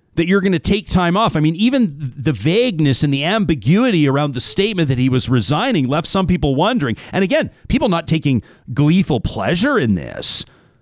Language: English